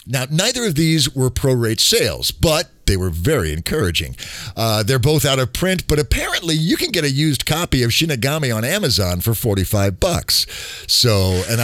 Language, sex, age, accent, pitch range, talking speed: English, male, 50-69, American, 110-160 Hz, 180 wpm